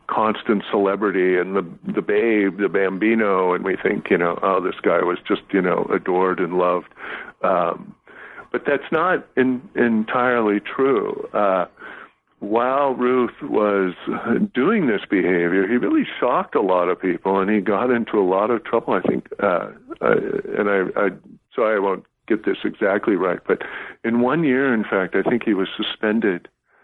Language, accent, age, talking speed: English, American, 50-69, 170 wpm